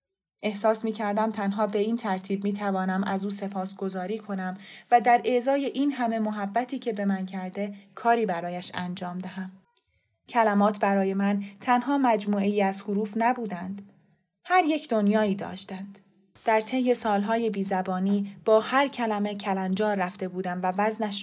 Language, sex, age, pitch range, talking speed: Persian, female, 20-39, 190-220 Hz, 145 wpm